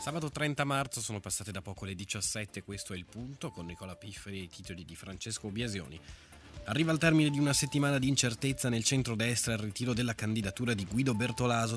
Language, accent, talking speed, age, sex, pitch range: Italian, native, 200 wpm, 20-39, male, 95-120 Hz